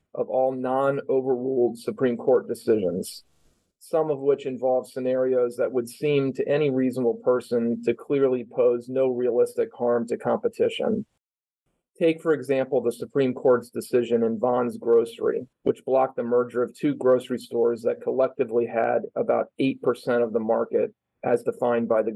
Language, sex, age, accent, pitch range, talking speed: English, male, 40-59, American, 120-150 Hz, 150 wpm